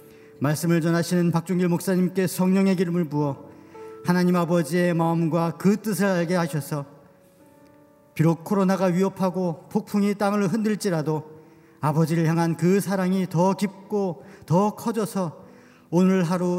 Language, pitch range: Korean, 135-180 Hz